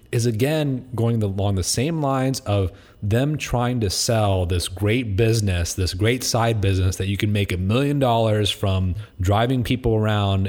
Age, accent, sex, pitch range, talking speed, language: 30-49, American, male, 95-115 Hz, 170 wpm, English